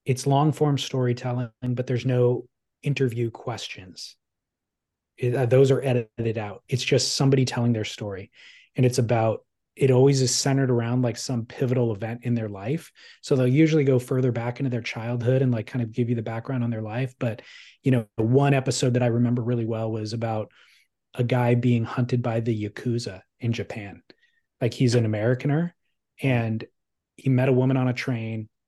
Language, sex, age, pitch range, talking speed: English, male, 30-49, 115-140 Hz, 180 wpm